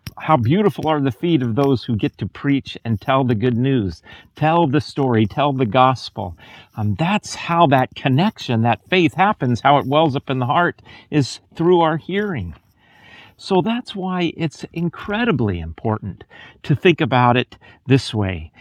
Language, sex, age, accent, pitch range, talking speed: English, male, 40-59, American, 115-165 Hz, 170 wpm